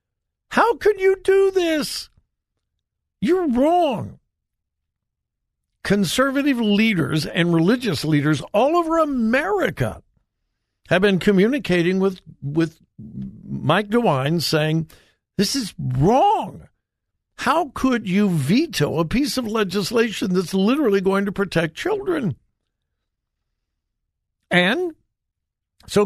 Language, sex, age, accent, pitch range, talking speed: English, male, 60-79, American, 155-255 Hz, 95 wpm